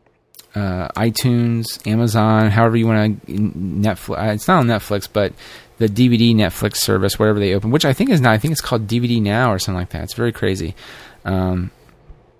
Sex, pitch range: male, 100-120 Hz